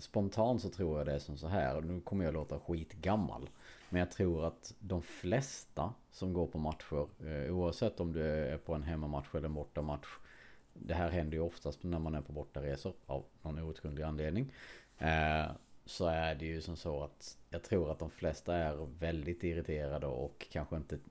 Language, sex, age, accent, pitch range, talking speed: Swedish, male, 30-49, Norwegian, 75-90 Hz, 200 wpm